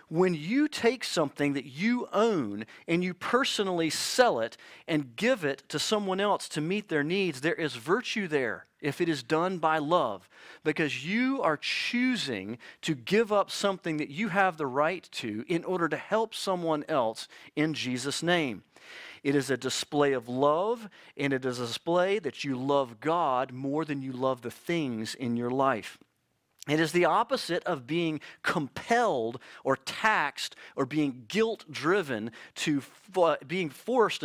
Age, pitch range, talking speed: 40-59, 135-190 Hz, 165 wpm